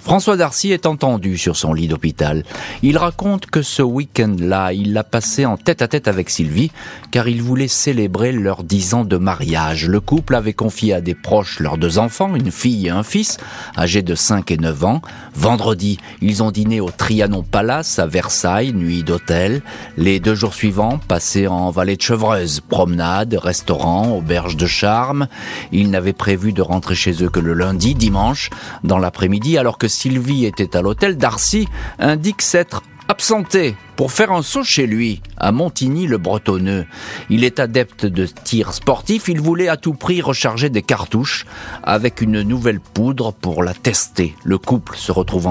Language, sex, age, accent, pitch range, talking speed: French, male, 40-59, French, 90-125 Hz, 175 wpm